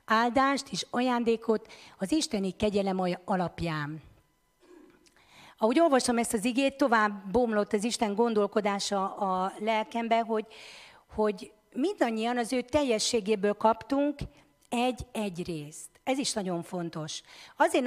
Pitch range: 185-240 Hz